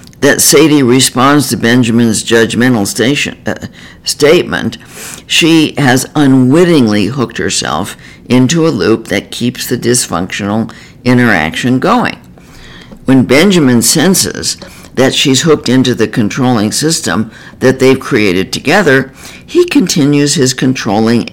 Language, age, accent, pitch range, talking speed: English, 60-79, American, 110-140 Hz, 115 wpm